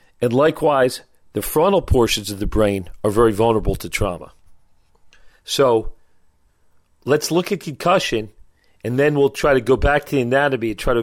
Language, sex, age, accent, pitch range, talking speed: English, male, 40-59, American, 85-135 Hz, 170 wpm